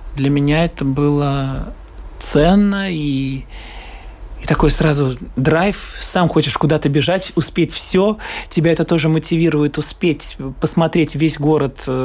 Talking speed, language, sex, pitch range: 125 wpm, Russian, male, 135-165 Hz